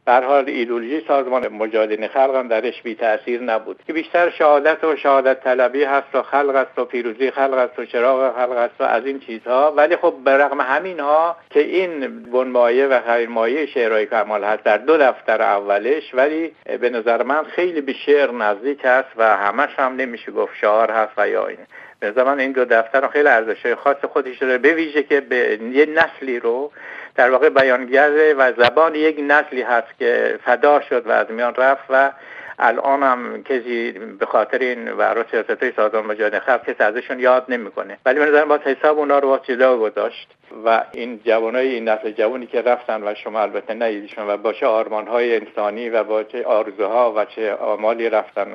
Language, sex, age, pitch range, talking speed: Persian, male, 60-79, 115-150 Hz, 180 wpm